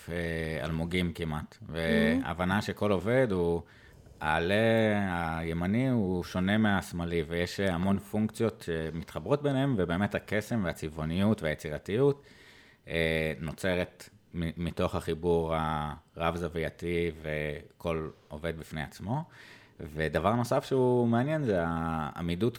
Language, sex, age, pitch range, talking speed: Hebrew, male, 30-49, 80-110 Hz, 90 wpm